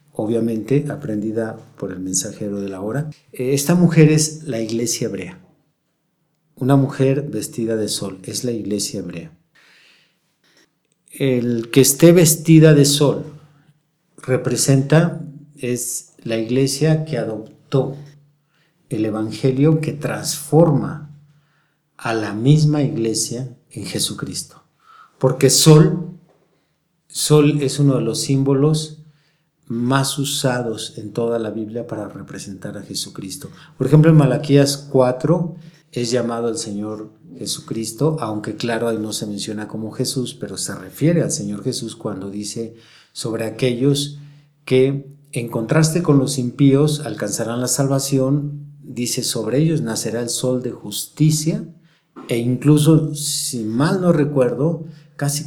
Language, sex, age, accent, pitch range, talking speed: Spanish, male, 50-69, Mexican, 115-155 Hz, 125 wpm